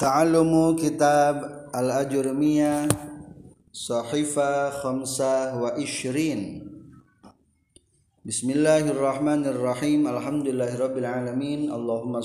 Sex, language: male, Indonesian